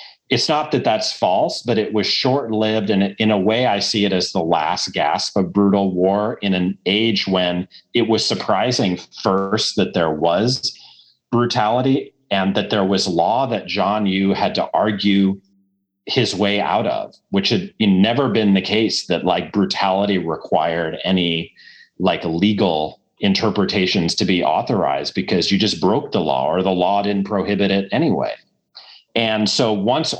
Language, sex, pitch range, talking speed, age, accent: English, male, 90-105 Hz, 165 wpm, 40-59, American